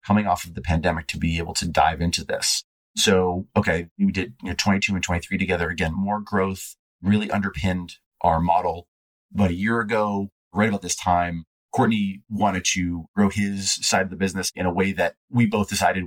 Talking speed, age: 190 wpm, 30-49